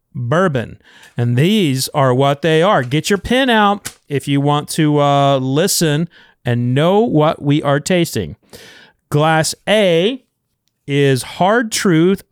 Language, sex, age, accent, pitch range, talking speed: English, male, 40-59, American, 140-195 Hz, 135 wpm